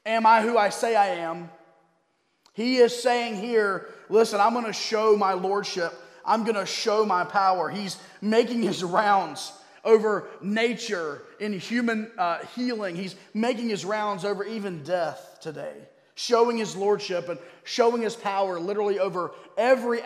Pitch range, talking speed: 195-235 Hz, 155 wpm